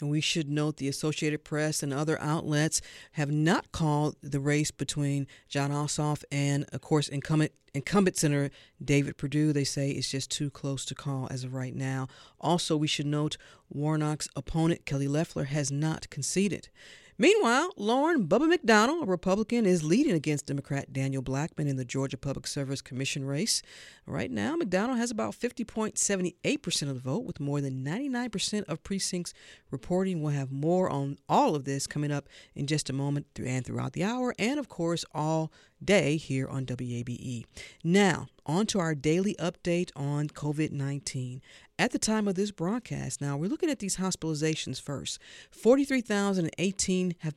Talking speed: 165 wpm